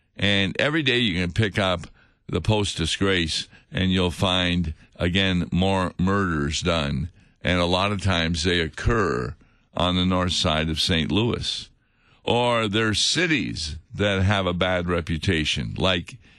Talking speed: 145 wpm